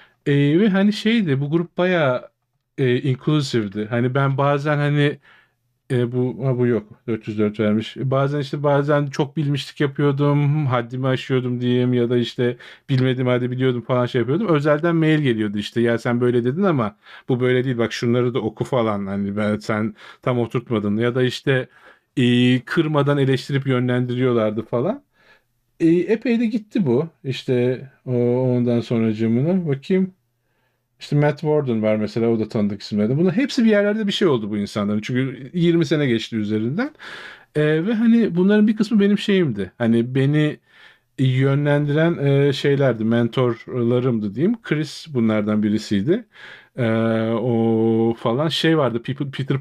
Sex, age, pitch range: male, 40-59, 115-145 Hz